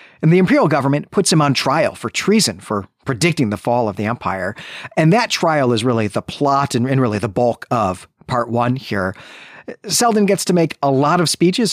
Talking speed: 210 wpm